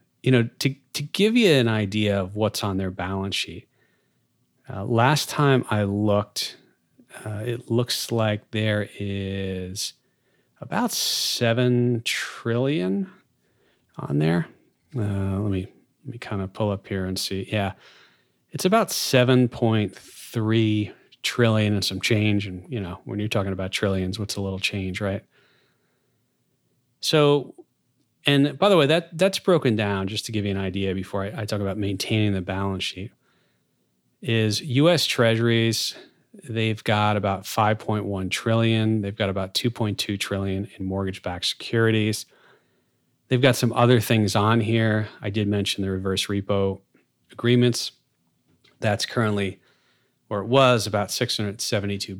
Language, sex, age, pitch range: English, male, 30-49, 100-120 Hz